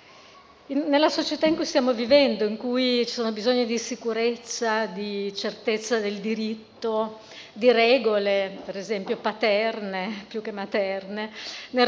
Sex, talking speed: female, 130 wpm